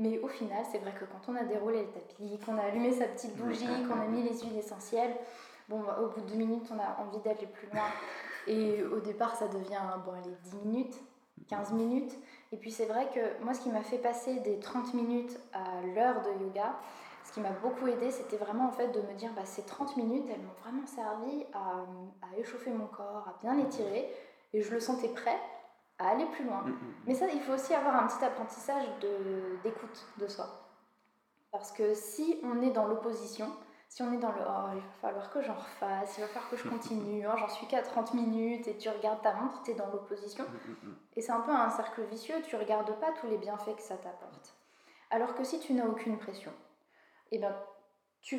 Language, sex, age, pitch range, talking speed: French, female, 10-29, 210-250 Hz, 230 wpm